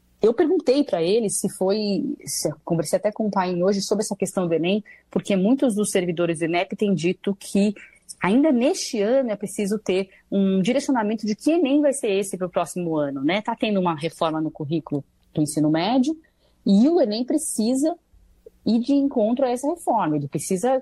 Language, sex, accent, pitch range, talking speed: Portuguese, female, Brazilian, 165-220 Hz, 195 wpm